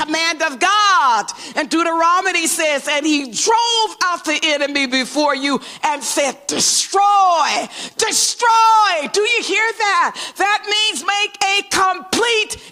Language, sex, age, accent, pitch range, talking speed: English, female, 50-69, American, 255-380 Hz, 115 wpm